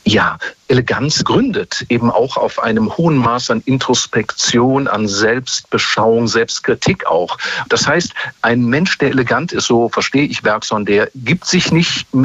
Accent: German